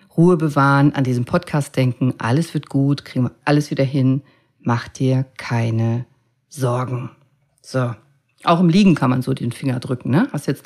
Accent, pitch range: German, 135-190 Hz